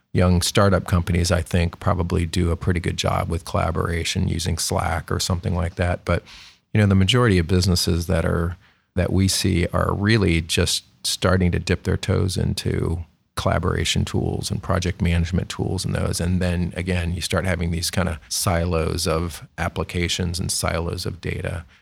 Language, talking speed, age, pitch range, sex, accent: English, 175 wpm, 40-59, 85-100 Hz, male, American